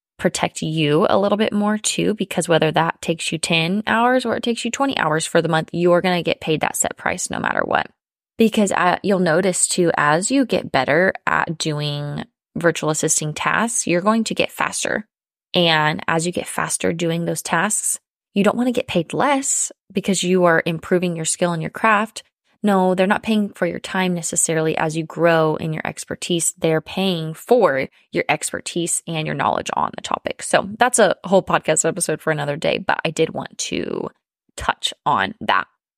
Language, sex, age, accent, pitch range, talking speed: English, female, 20-39, American, 160-205 Hz, 200 wpm